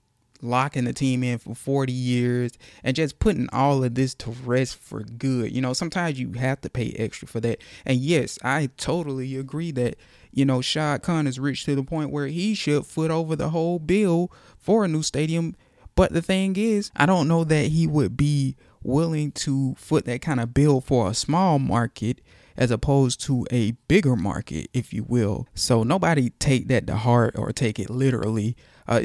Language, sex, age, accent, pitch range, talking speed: English, male, 20-39, American, 115-145 Hz, 200 wpm